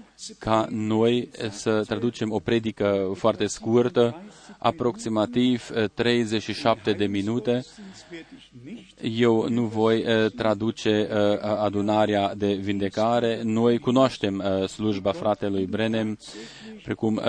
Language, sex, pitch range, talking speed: Romanian, male, 110-120 Hz, 85 wpm